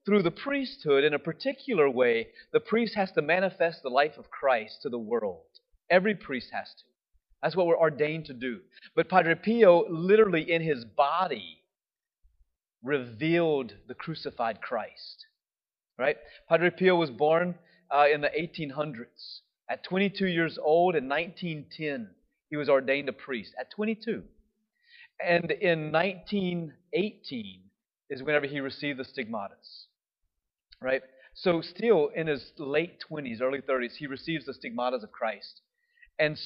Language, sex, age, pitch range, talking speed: English, male, 30-49, 135-195 Hz, 145 wpm